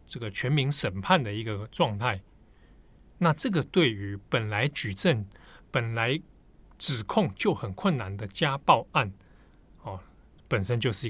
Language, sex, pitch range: Chinese, male, 105-155 Hz